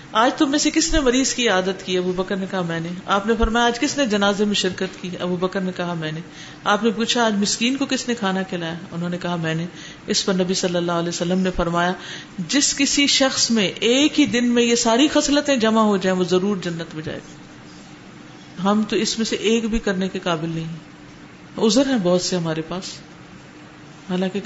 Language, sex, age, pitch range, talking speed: Urdu, female, 50-69, 185-280 Hz, 170 wpm